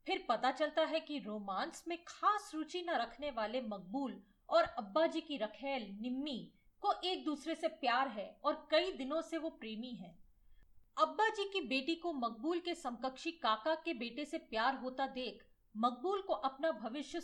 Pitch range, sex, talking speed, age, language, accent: 240-320 Hz, female, 170 wpm, 40-59, Hindi, native